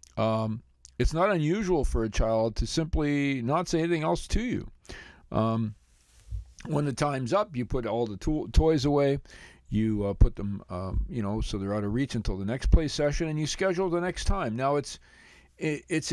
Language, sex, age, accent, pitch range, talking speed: English, male, 50-69, American, 110-150 Hz, 195 wpm